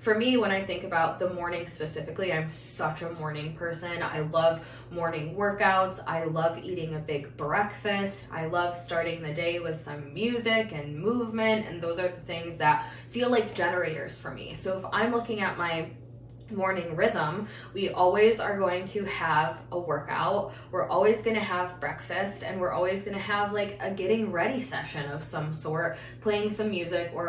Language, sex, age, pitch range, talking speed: English, female, 20-39, 155-200 Hz, 185 wpm